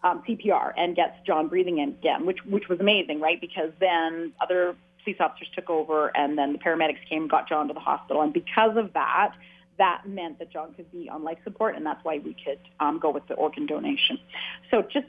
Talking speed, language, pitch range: 225 wpm, English, 160-200 Hz